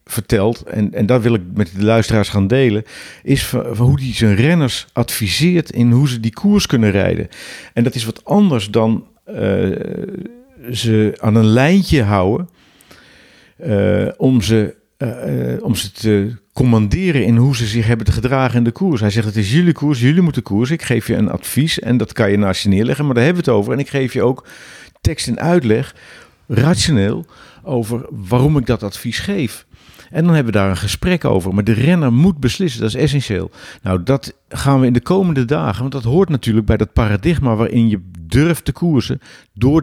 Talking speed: 200 wpm